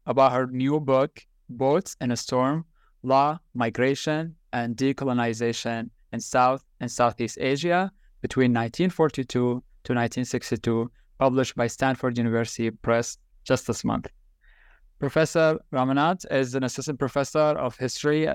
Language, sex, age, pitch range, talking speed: English, male, 20-39, 125-145 Hz, 120 wpm